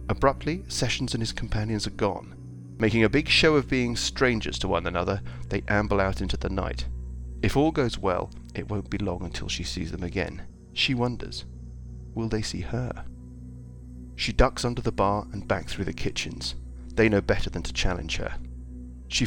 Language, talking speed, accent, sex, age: English, 185 wpm, British, male, 40-59